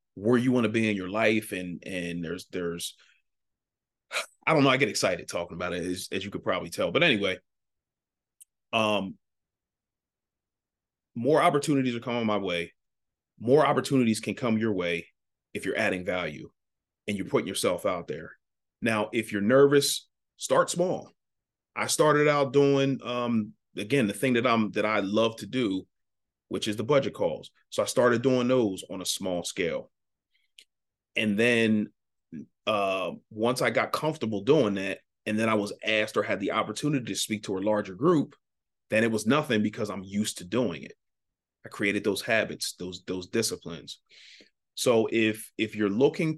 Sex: male